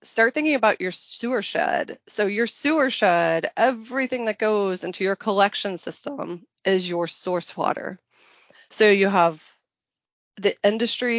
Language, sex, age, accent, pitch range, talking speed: English, female, 20-39, American, 175-210 Hz, 140 wpm